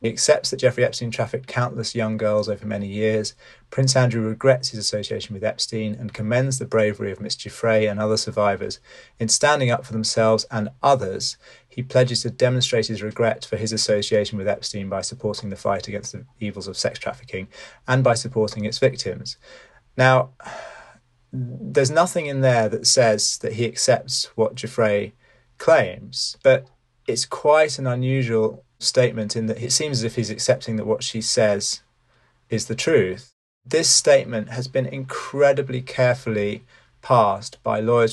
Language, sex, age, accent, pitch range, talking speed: English, male, 30-49, British, 110-130 Hz, 165 wpm